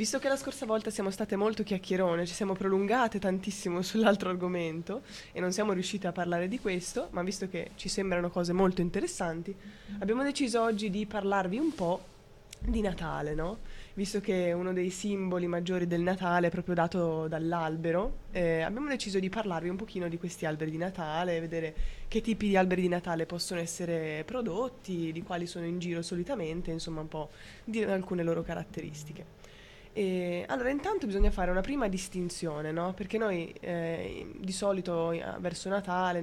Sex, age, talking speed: female, 20-39, 170 wpm